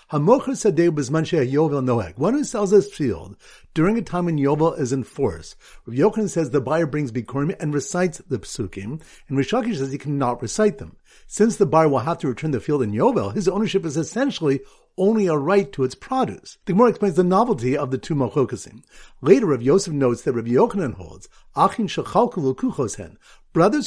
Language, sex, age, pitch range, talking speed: English, male, 50-69, 145-205 Hz, 190 wpm